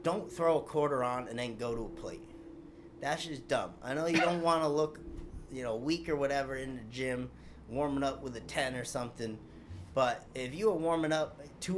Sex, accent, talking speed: male, American, 215 wpm